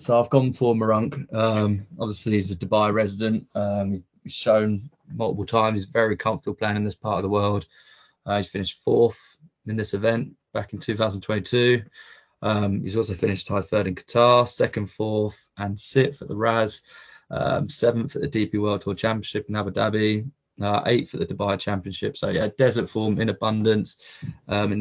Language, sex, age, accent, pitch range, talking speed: English, male, 20-39, British, 105-115 Hz, 180 wpm